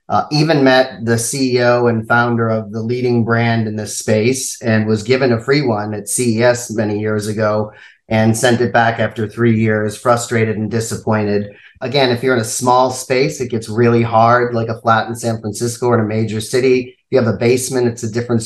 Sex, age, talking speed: male, 30-49, 210 wpm